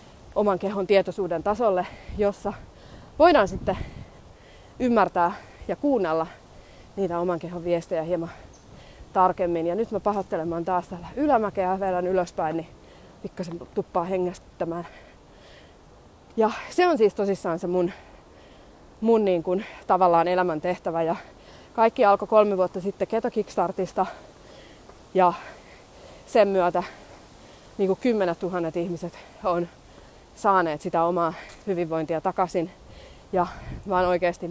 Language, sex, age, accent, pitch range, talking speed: Finnish, female, 20-39, native, 170-200 Hz, 110 wpm